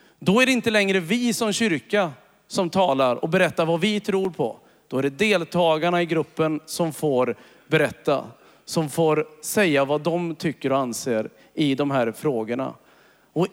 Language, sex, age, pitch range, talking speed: Swedish, male, 40-59, 165-210 Hz, 170 wpm